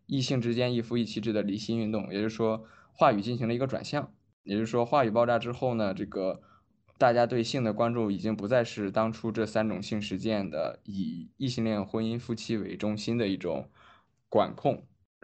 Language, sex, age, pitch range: Chinese, male, 20-39, 100-120 Hz